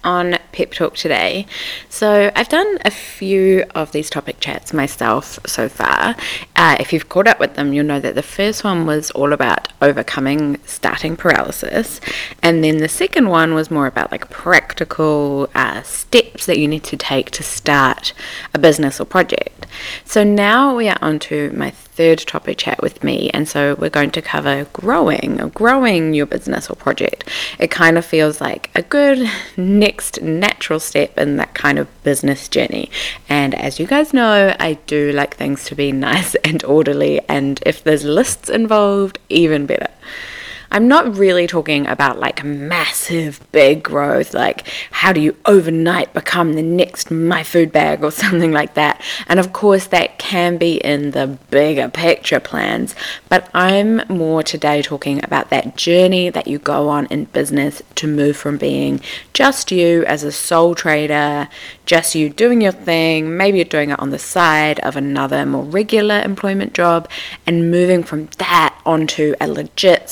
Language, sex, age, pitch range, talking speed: English, female, 20-39, 145-195 Hz, 175 wpm